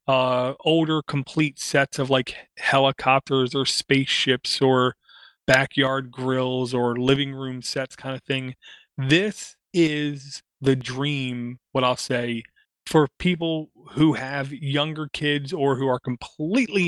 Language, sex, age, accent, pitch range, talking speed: English, male, 30-49, American, 130-155 Hz, 130 wpm